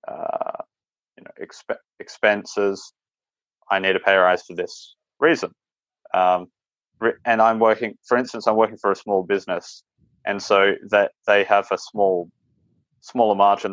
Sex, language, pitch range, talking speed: male, English, 95-115 Hz, 140 wpm